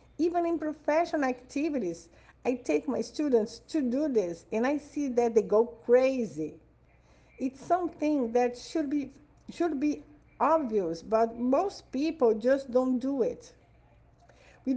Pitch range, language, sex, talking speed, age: 190-275 Hz, Portuguese, female, 135 wpm, 50-69